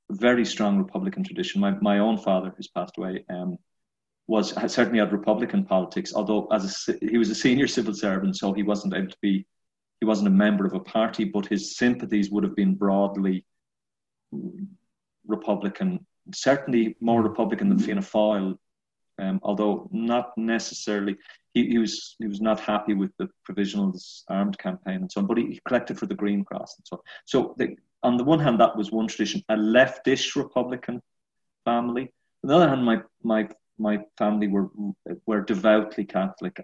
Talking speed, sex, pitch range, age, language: 180 wpm, male, 100-120 Hz, 30-49, English